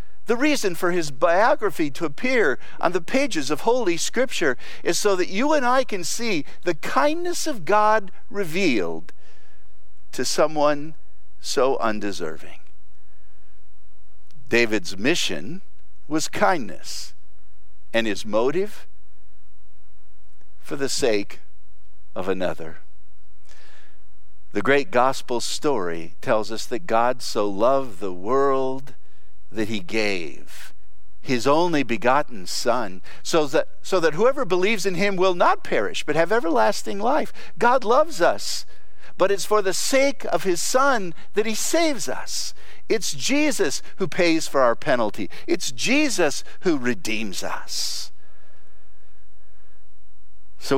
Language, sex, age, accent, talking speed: English, male, 50-69, American, 120 wpm